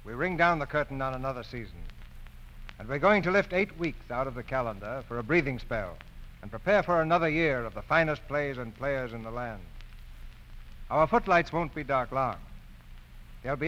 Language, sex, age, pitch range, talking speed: English, male, 60-79, 100-150 Hz, 195 wpm